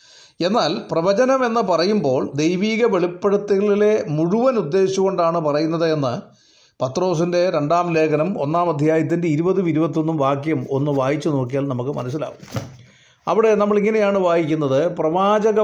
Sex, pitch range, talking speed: male, 155-205 Hz, 105 wpm